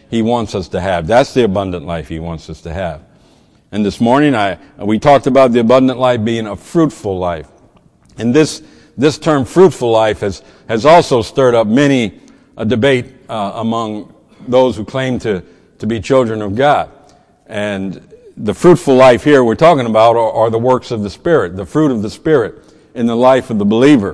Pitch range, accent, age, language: 105-135 Hz, American, 60-79, English